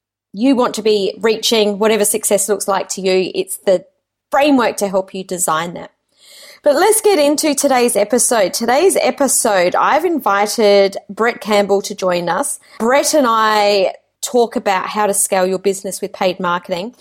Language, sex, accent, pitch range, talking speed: English, female, Australian, 195-240 Hz, 165 wpm